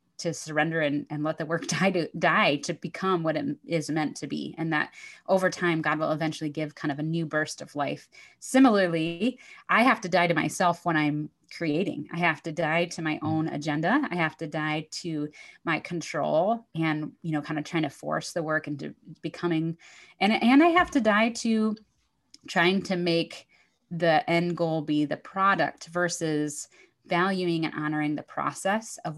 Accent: American